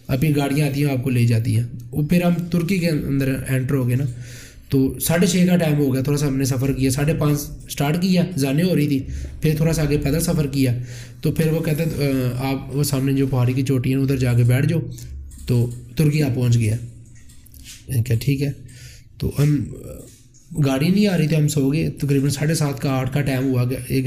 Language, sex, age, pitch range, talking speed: Urdu, male, 20-39, 125-150 Hz, 195 wpm